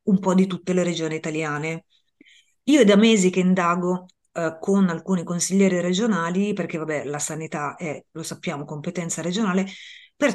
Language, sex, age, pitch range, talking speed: Italian, female, 30-49, 155-185 Hz, 160 wpm